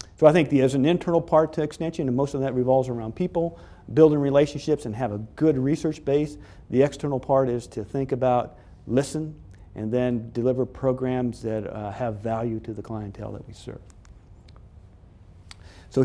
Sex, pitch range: male, 115-150 Hz